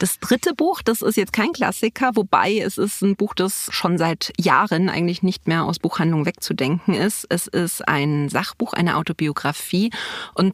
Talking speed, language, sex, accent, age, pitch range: 175 wpm, German, female, German, 30-49, 175-205 Hz